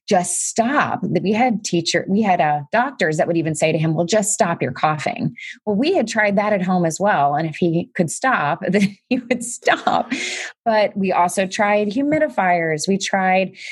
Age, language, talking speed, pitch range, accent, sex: 20-39, English, 200 wpm, 160-205 Hz, American, female